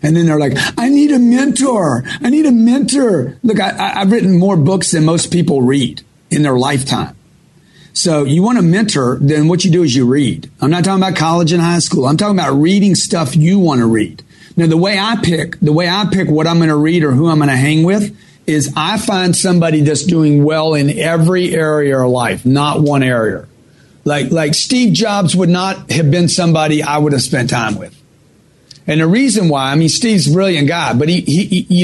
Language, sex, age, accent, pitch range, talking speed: English, male, 40-59, American, 150-190 Hz, 225 wpm